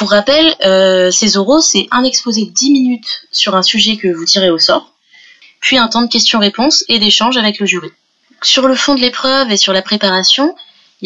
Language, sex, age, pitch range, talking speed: French, female, 20-39, 195-260 Hz, 210 wpm